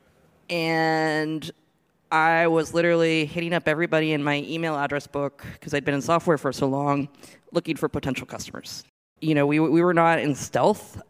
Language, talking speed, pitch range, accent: English, 175 wpm, 145-175 Hz, American